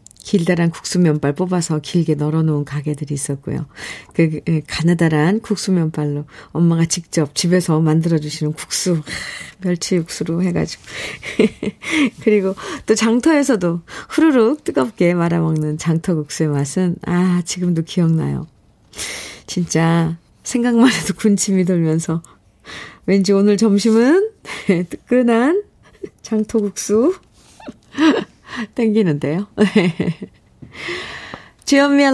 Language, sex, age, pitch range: Korean, female, 40-59, 170-225 Hz